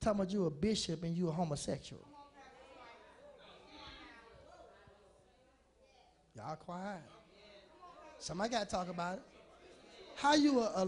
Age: 20-39